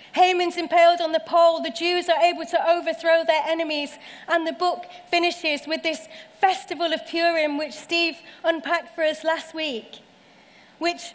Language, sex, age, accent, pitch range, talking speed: English, female, 30-49, British, 295-345 Hz, 160 wpm